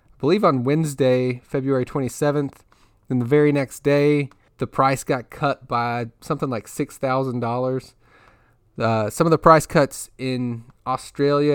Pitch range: 125-150 Hz